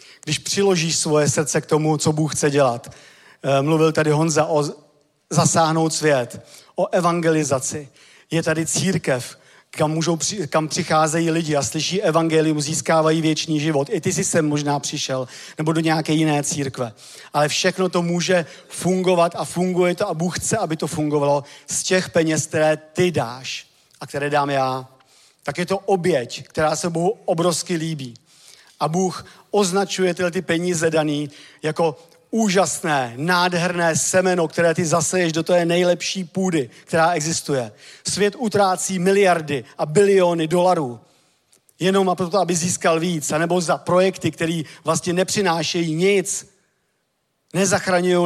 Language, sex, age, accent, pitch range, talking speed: Czech, male, 40-59, native, 150-180 Hz, 140 wpm